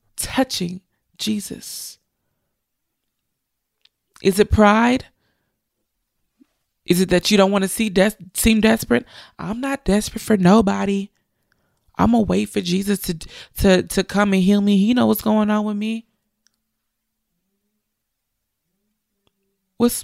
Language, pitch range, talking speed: English, 195-250 Hz, 125 wpm